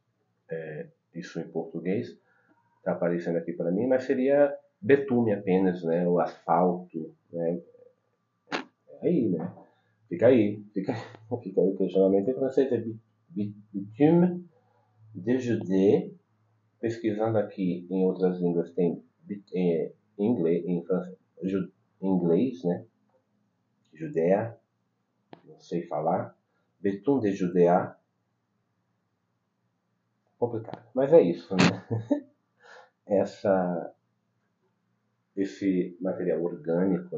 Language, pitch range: Portuguese, 85-115 Hz